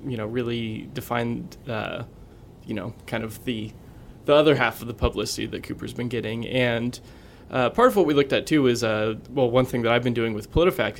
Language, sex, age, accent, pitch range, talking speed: English, male, 20-39, American, 110-130 Hz, 220 wpm